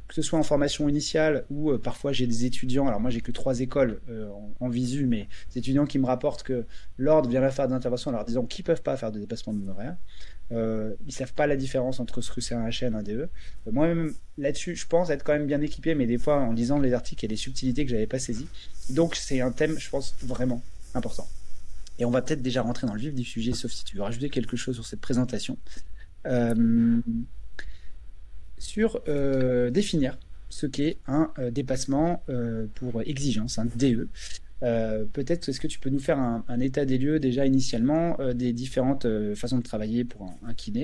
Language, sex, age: French, male, 20-39